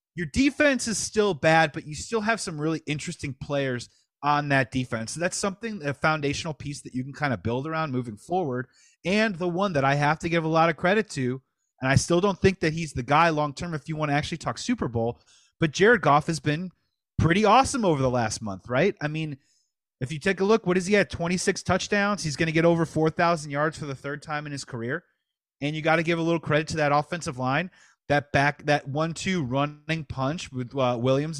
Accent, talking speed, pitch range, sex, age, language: American, 235 wpm, 140-180 Hz, male, 30-49, English